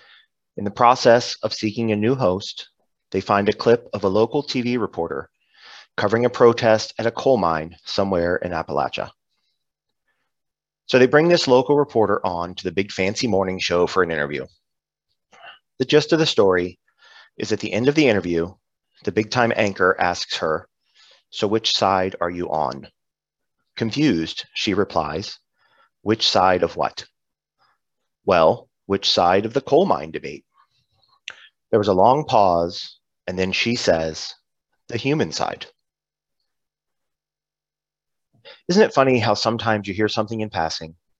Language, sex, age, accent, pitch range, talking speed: English, male, 30-49, American, 90-115 Hz, 150 wpm